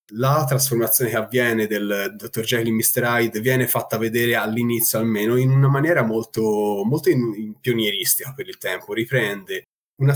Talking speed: 165 wpm